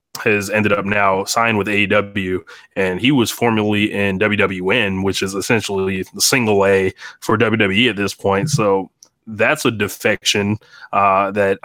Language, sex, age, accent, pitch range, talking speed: English, male, 20-39, American, 100-120 Hz, 155 wpm